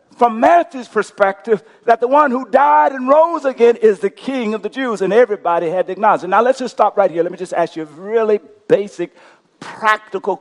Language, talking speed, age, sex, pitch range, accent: English, 220 wpm, 50-69, male, 230-300 Hz, American